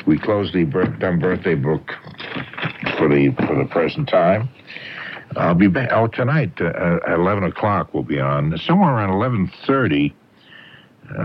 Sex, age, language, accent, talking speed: male, 60-79, English, American, 145 wpm